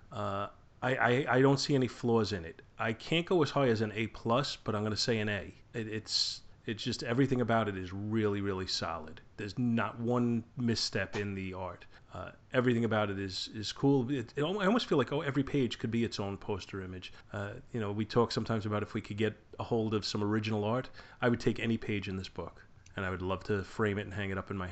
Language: English